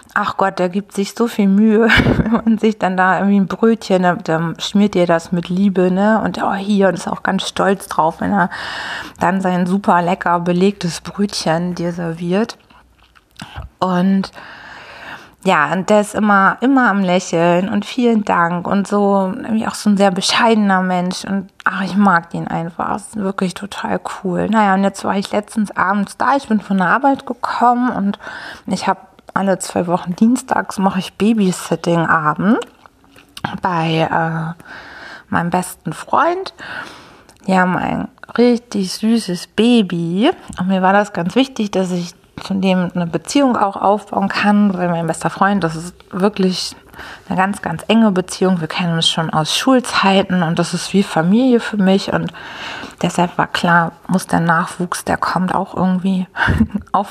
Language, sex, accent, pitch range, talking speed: German, female, German, 180-210 Hz, 170 wpm